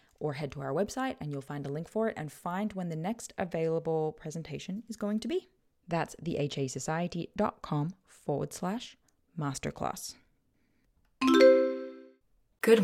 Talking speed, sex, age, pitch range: 135 wpm, female, 20-39, 150-210 Hz